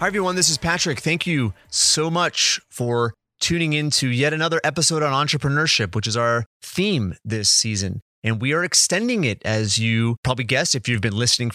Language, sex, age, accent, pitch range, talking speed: English, male, 30-49, American, 110-135 Hz, 185 wpm